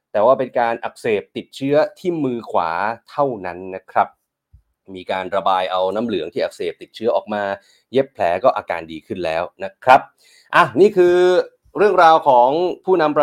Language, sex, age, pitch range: Thai, male, 30-49, 110-155 Hz